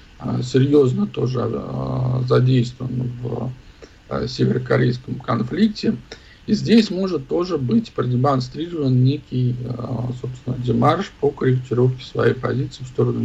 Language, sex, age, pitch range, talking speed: Russian, male, 50-69, 115-135 Hz, 110 wpm